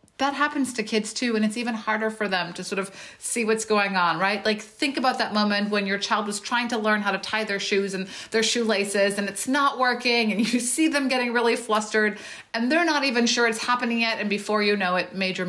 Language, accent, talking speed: English, American, 250 wpm